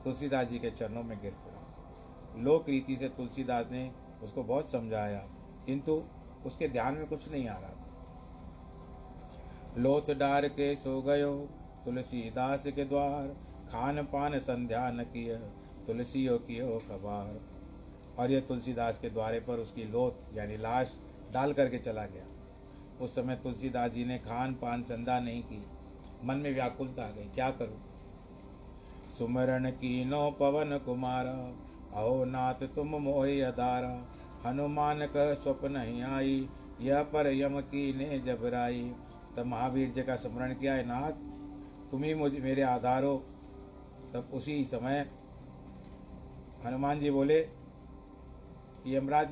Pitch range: 115-140 Hz